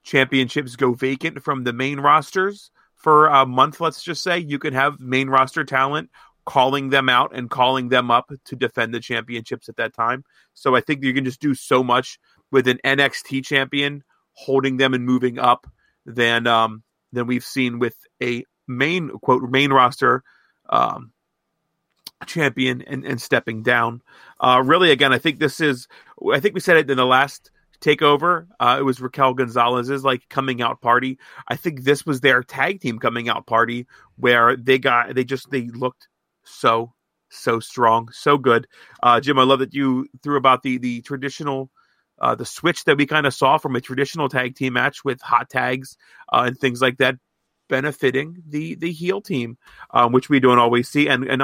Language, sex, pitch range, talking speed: English, male, 125-140 Hz, 190 wpm